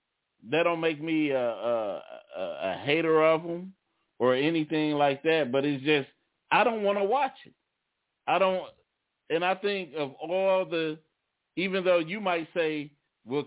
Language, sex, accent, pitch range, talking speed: English, male, American, 135-170 Hz, 170 wpm